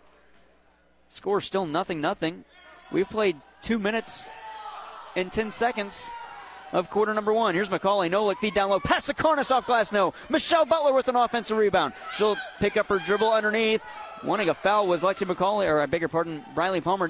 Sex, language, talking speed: male, English, 185 wpm